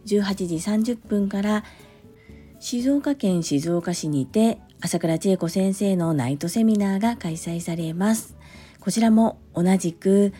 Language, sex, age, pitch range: Japanese, female, 40-59, 165-215 Hz